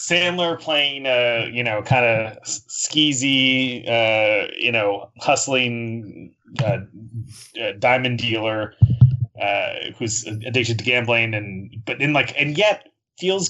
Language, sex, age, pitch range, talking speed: English, male, 30-49, 110-135 Hz, 120 wpm